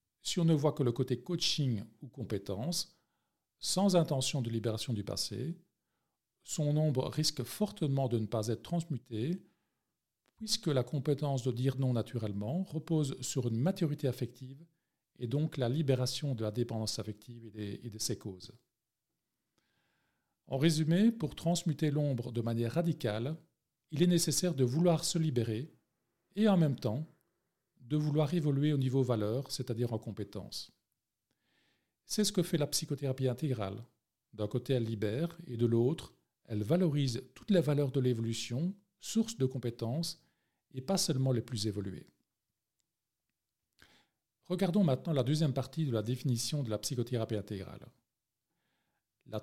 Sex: male